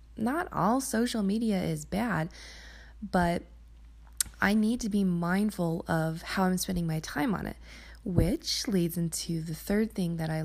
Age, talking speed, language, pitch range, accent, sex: 20-39, 160 wpm, English, 165-210 Hz, American, female